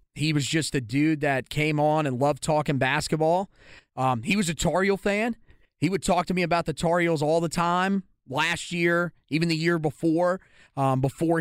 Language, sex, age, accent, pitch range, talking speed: English, male, 30-49, American, 135-165 Hz, 195 wpm